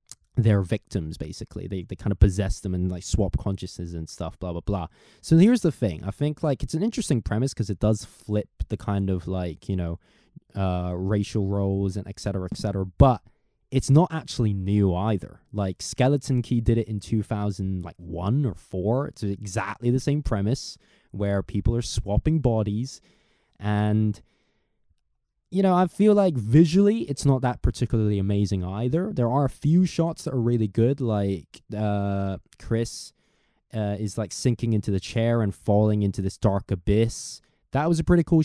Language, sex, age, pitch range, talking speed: English, male, 20-39, 100-135 Hz, 185 wpm